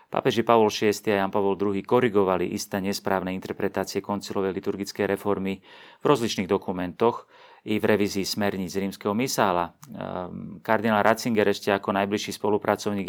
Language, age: Slovak, 40-59